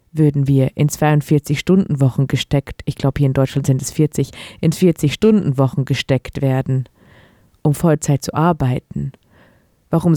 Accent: German